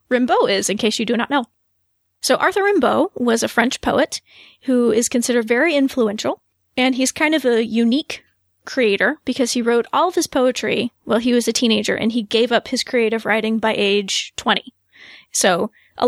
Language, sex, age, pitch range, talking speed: English, female, 20-39, 215-250 Hz, 190 wpm